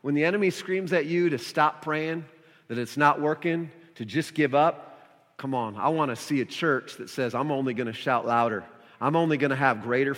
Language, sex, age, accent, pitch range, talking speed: English, male, 40-59, American, 135-180 Hz, 230 wpm